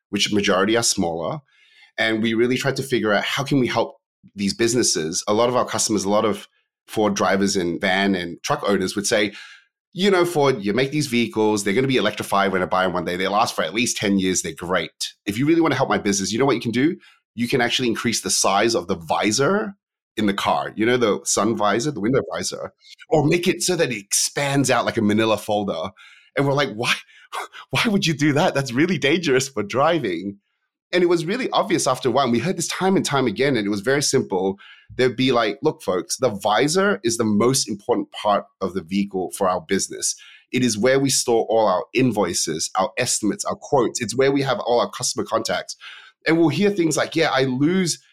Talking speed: 235 wpm